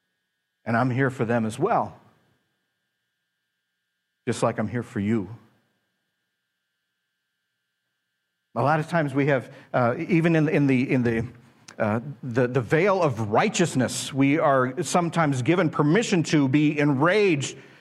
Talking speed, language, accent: 135 wpm, English, American